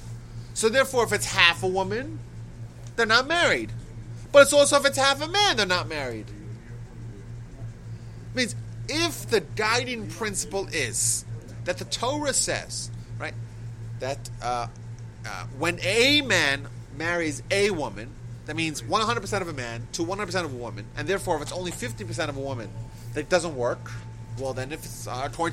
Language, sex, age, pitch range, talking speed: English, male, 30-49, 115-195 Hz, 165 wpm